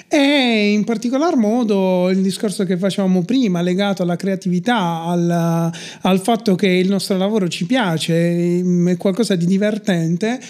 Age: 30-49